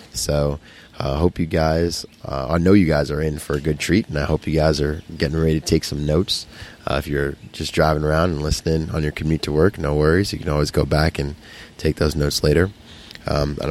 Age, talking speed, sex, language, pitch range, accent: 20-39, 235 wpm, male, English, 75-90 Hz, American